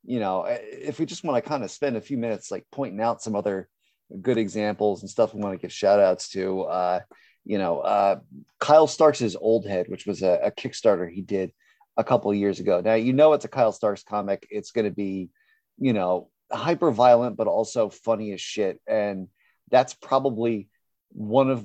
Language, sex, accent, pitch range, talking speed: English, male, American, 100-120 Hz, 210 wpm